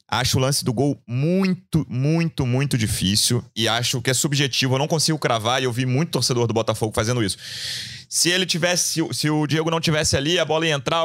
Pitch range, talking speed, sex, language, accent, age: 115-150 Hz, 215 wpm, male, Portuguese, Brazilian, 30-49